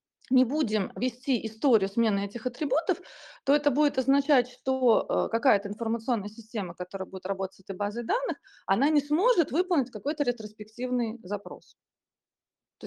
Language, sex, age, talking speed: Russian, female, 30-49, 140 wpm